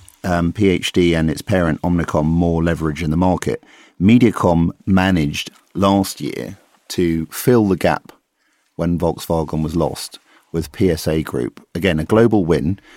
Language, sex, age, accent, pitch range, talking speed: English, male, 50-69, British, 80-95 Hz, 140 wpm